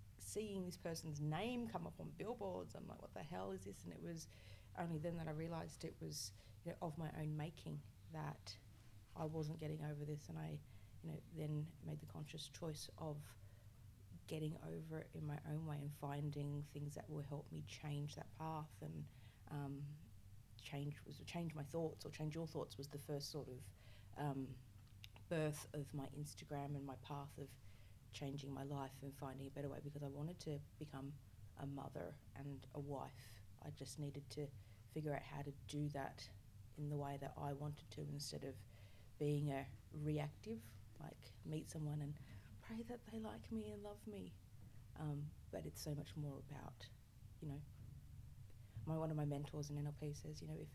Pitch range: 110-150 Hz